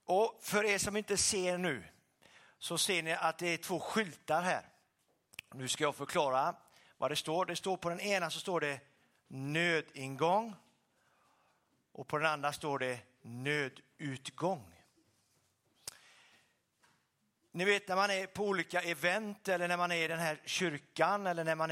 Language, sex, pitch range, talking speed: Swedish, male, 135-180 Hz, 150 wpm